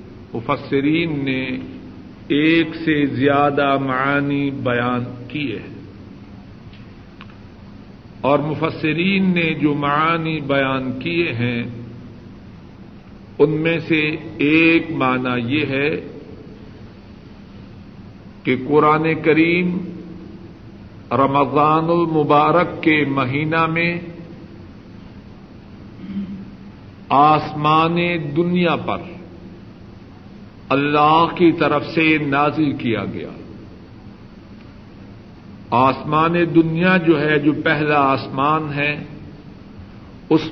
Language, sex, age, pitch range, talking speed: Urdu, male, 50-69, 110-165 Hz, 75 wpm